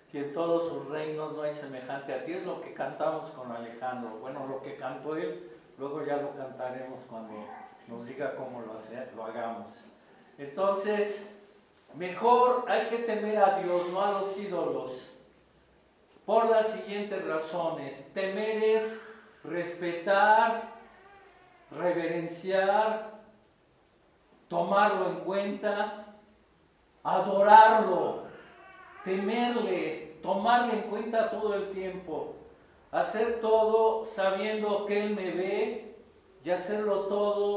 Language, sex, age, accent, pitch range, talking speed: Spanish, male, 50-69, Mexican, 160-215 Hz, 115 wpm